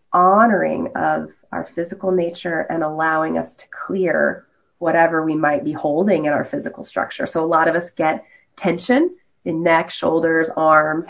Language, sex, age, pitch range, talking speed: English, female, 20-39, 155-200 Hz, 160 wpm